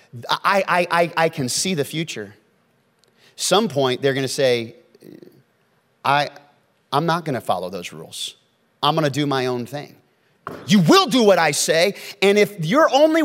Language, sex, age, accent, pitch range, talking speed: English, male, 30-49, American, 130-185 Hz, 165 wpm